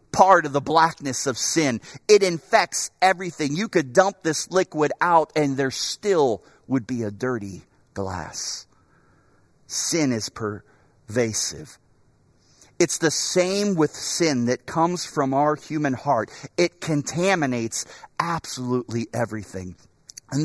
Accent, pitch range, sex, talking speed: American, 120-175 Hz, male, 125 wpm